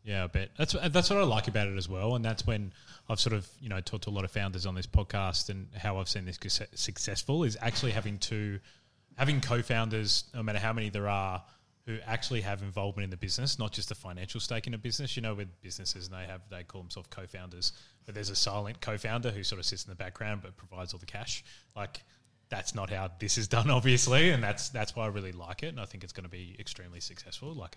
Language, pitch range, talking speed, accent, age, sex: English, 95-120 Hz, 250 wpm, Australian, 20-39, male